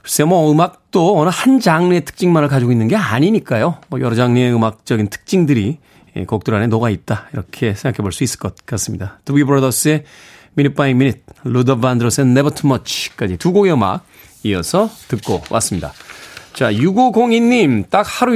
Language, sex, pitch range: Korean, male, 120-170 Hz